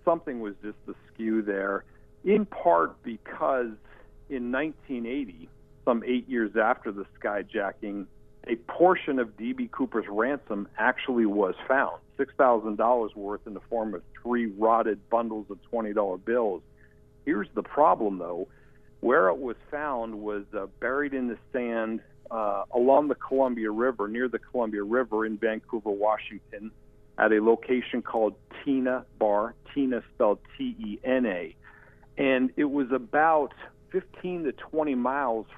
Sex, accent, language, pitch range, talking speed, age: male, American, English, 105-130 Hz, 140 wpm, 50-69